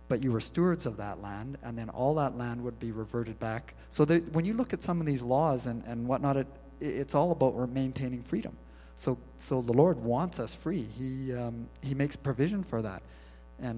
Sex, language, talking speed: male, English, 220 wpm